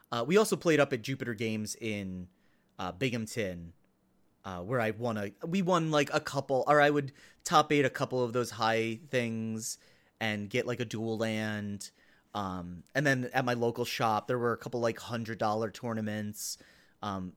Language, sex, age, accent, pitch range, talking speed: English, male, 30-49, American, 110-140 Hz, 185 wpm